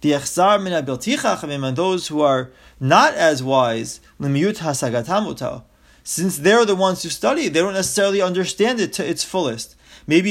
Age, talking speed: 30-49, 130 wpm